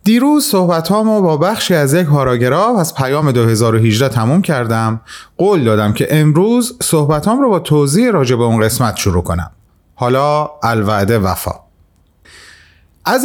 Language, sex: Persian, male